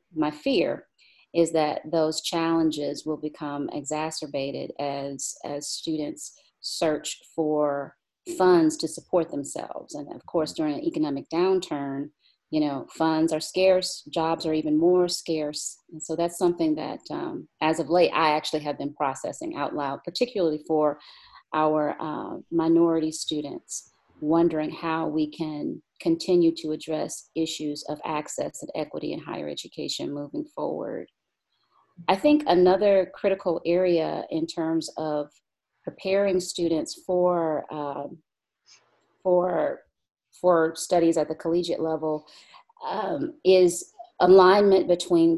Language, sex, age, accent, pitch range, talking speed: English, female, 40-59, American, 155-180 Hz, 125 wpm